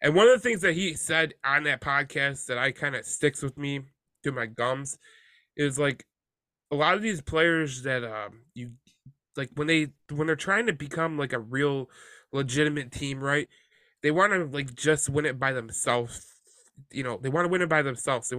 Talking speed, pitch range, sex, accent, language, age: 210 wpm, 125-150 Hz, male, American, English, 20-39